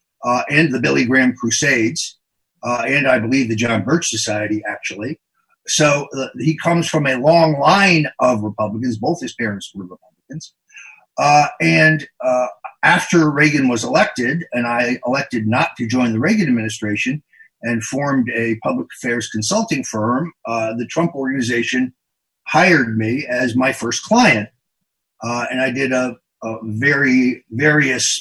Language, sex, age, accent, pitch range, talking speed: English, male, 50-69, American, 115-150 Hz, 150 wpm